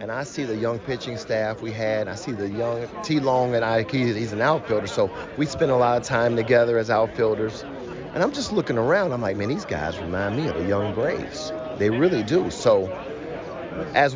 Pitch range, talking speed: 110-140 Hz, 220 wpm